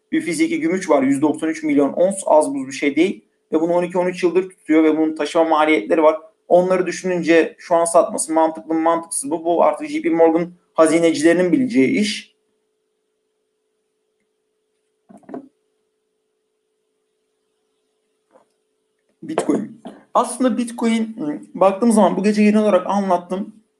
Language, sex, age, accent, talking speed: Turkish, male, 50-69, native, 125 wpm